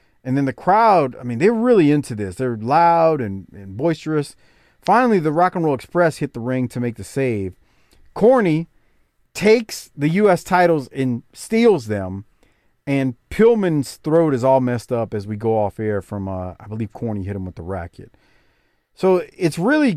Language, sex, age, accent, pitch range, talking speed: English, male, 40-59, American, 120-170 Hz, 185 wpm